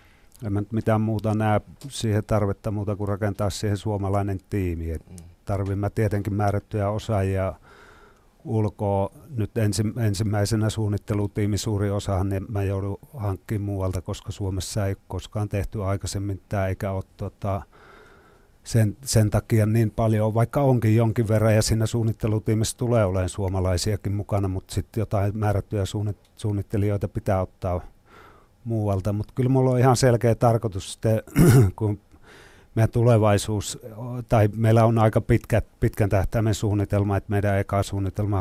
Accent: native